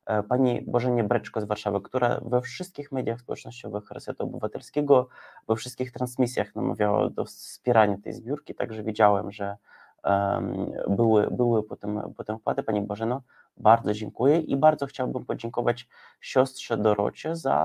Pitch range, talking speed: 105-130 Hz, 135 wpm